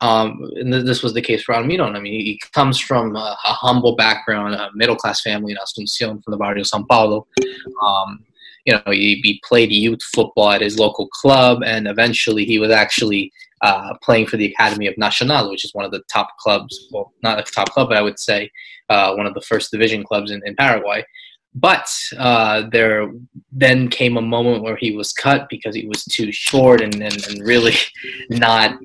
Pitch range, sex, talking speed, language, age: 110-130 Hz, male, 200 wpm, English, 20-39